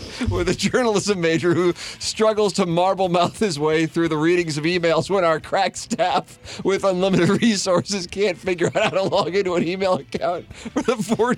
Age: 40-59